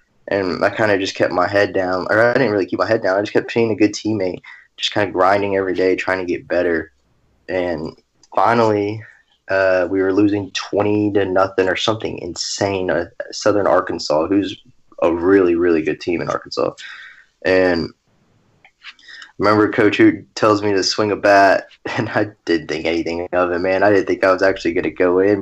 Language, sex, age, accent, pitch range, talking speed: English, male, 20-39, American, 95-110 Hz, 205 wpm